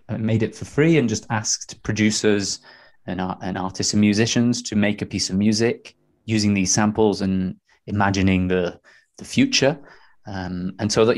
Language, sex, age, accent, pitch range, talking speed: English, male, 20-39, British, 95-110 Hz, 170 wpm